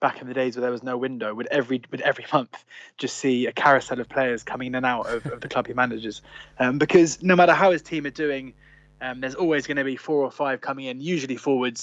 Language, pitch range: English, 120-140 Hz